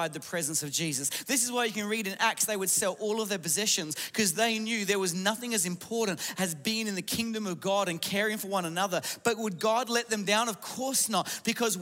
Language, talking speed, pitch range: English, 250 wpm, 180-230 Hz